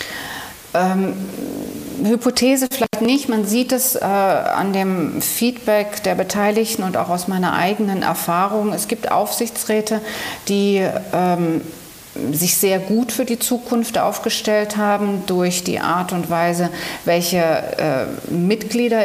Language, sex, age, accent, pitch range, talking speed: German, female, 40-59, German, 175-205 Hz, 125 wpm